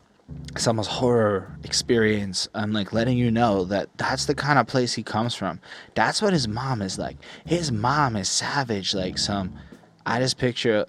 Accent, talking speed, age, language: American, 175 wpm, 20-39, English